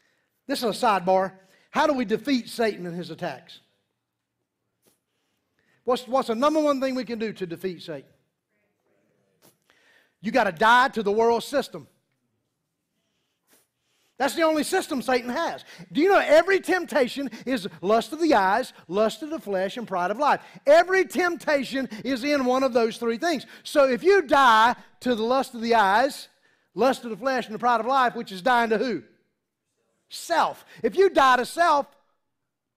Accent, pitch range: American, 205-280 Hz